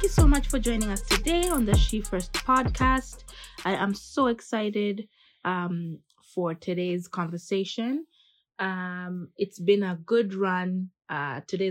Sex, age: female, 20-39